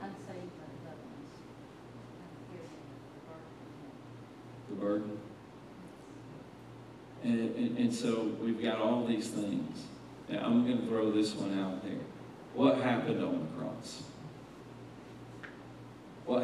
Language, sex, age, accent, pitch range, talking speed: English, male, 40-59, American, 120-155 Hz, 90 wpm